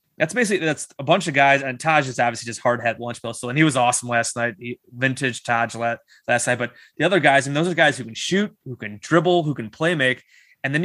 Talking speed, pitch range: 270 wpm, 120-150 Hz